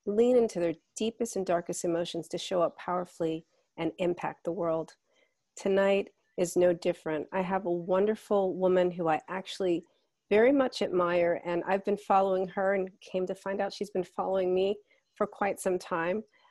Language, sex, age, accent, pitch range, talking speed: English, female, 40-59, American, 175-200 Hz, 175 wpm